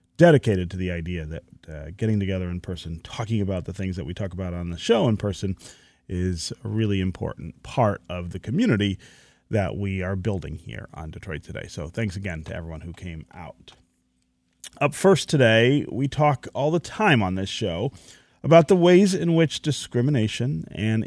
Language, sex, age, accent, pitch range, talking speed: English, male, 40-59, American, 95-135 Hz, 185 wpm